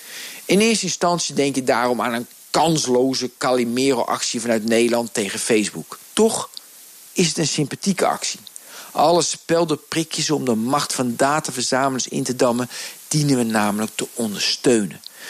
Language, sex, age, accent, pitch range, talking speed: Dutch, male, 50-69, Dutch, 115-150 Hz, 140 wpm